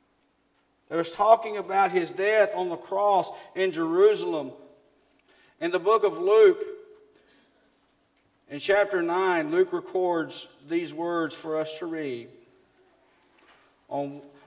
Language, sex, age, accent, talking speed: English, male, 40-59, American, 115 wpm